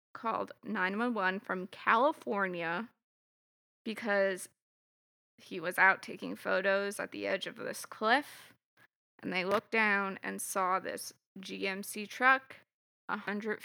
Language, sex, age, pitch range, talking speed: English, female, 20-39, 190-210 Hz, 115 wpm